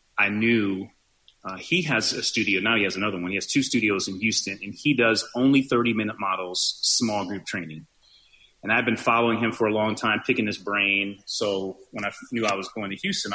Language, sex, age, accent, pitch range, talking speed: English, male, 30-49, American, 100-115 Hz, 220 wpm